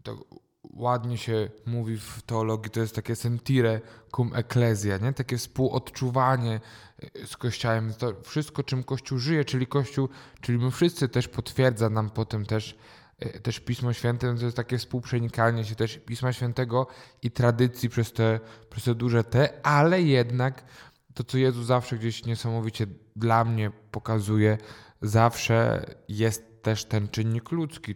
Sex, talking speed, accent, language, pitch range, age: male, 145 wpm, native, Polish, 110-130 Hz, 10-29